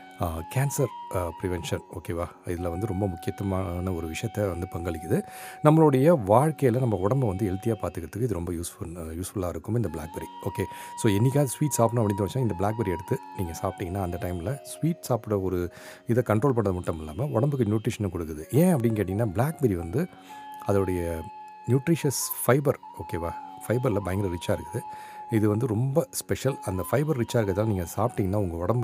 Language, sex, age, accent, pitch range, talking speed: Tamil, male, 40-59, native, 95-130 Hz, 150 wpm